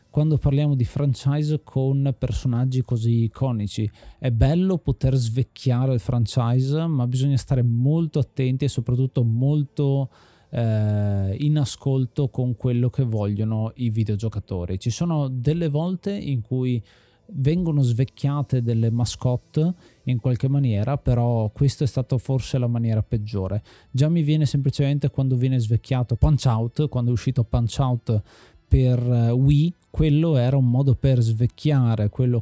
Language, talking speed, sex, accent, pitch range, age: Italian, 140 wpm, male, native, 115-140 Hz, 20-39